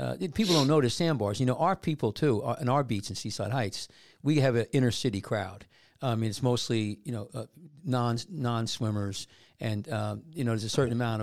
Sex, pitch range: male, 110-135 Hz